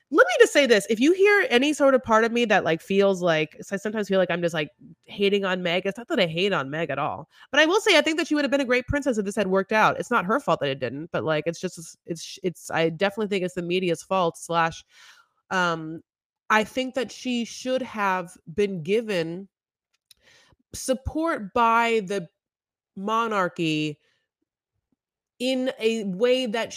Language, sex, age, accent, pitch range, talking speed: English, female, 30-49, American, 185-255 Hz, 210 wpm